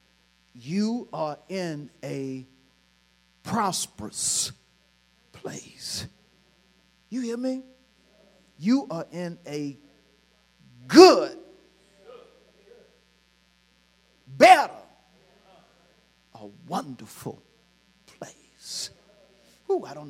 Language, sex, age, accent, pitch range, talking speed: English, male, 50-69, American, 135-195 Hz, 60 wpm